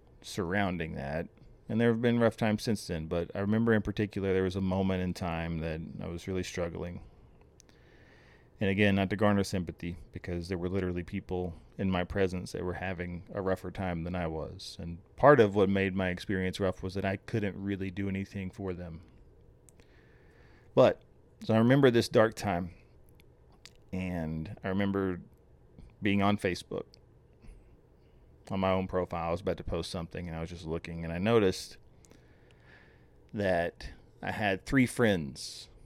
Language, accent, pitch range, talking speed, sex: English, American, 85-100 Hz, 170 wpm, male